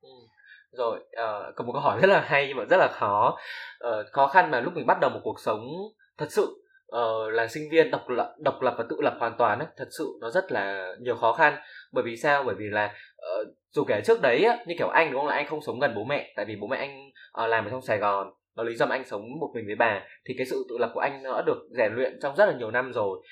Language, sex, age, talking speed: Vietnamese, male, 20-39, 290 wpm